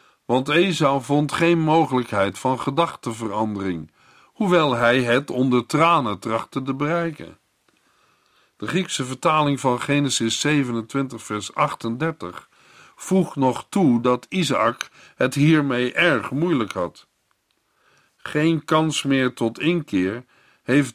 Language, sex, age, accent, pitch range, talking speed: Dutch, male, 50-69, Dutch, 115-155 Hz, 110 wpm